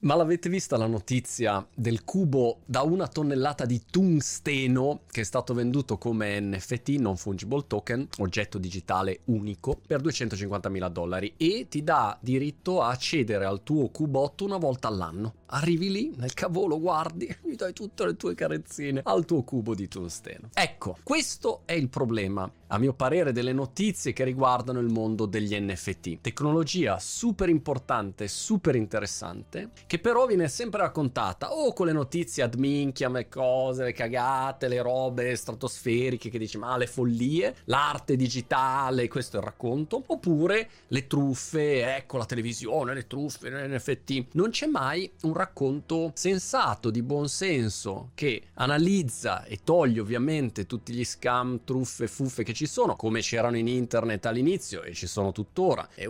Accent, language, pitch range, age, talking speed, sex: native, Italian, 110-150 Hz, 30-49, 160 wpm, male